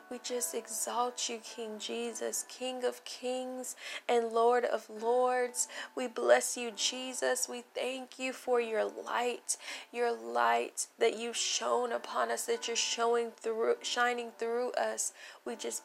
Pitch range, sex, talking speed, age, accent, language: 230-270 Hz, female, 150 wpm, 20-39, American, English